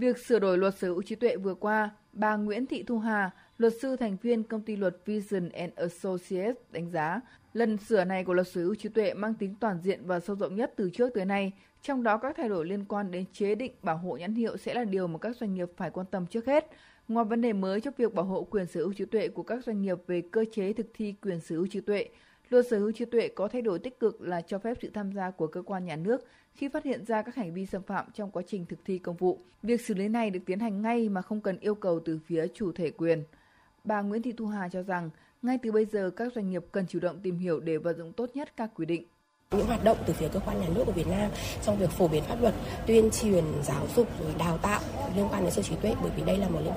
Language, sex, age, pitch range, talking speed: Vietnamese, female, 20-39, 180-225 Hz, 280 wpm